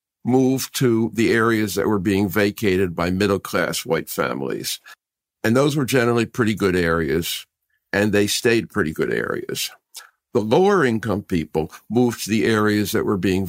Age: 50-69